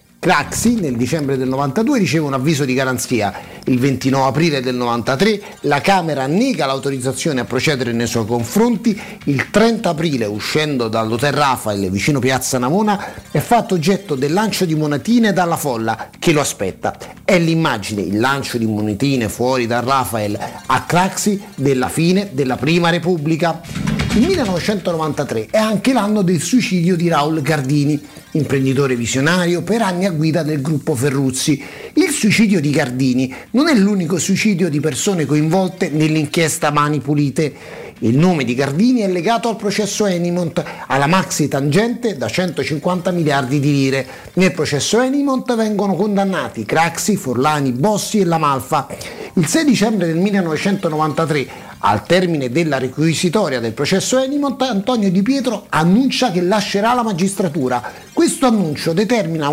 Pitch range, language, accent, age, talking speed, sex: 140-200 Hz, Italian, native, 30-49, 145 wpm, male